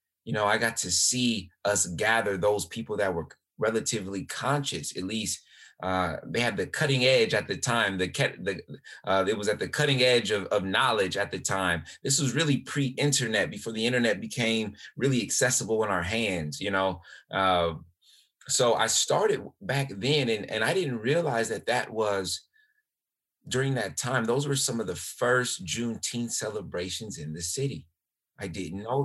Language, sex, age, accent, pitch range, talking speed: English, male, 30-49, American, 90-120 Hz, 180 wpm